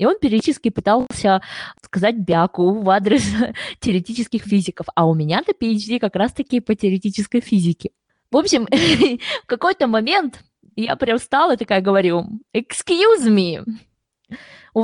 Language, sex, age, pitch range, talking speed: Russian, female, 20-39, 185-230 Hz, 135 wpm